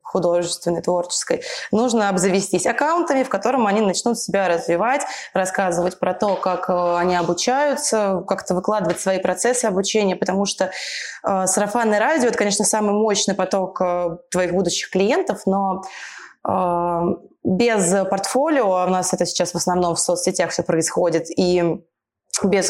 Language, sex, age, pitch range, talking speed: Russian, female, 20-39, 180-210 Hz, 140 wpm